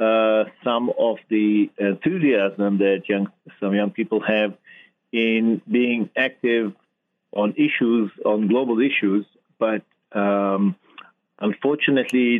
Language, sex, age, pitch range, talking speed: English, male, 50-69, 105-125 Hz, 100 wpm